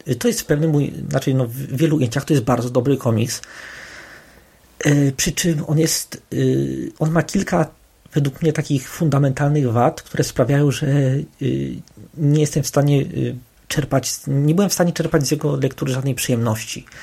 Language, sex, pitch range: Polish, male, 125-150 Hz